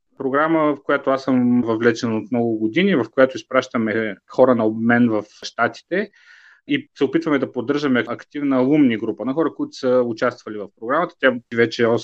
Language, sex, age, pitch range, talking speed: Bulgarian, male, 30-49, 120-145 Hz, 170 wpm